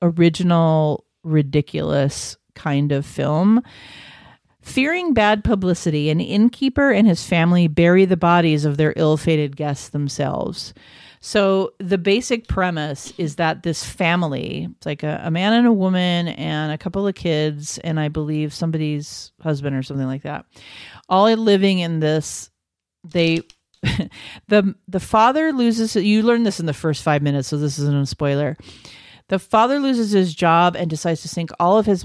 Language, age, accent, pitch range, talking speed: English, 40-59, American, 150-210 Hz, 165 wpm